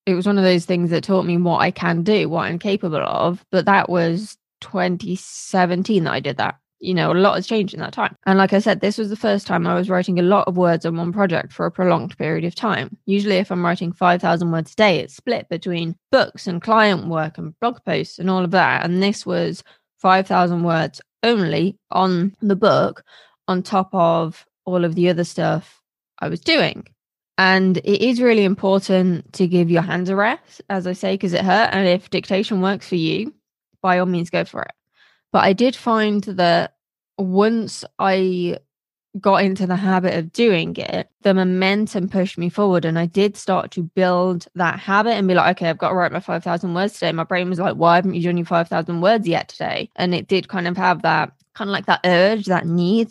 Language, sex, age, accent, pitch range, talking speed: English, female, 20-39, British, 175-205 Hz, 220 wpm